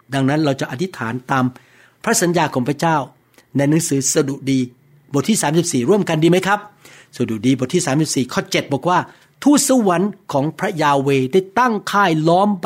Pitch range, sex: 140-190 Hz, male